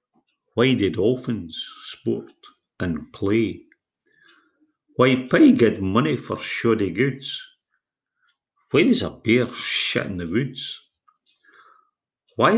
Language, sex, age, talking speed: English, male, 50-69, 105 wpm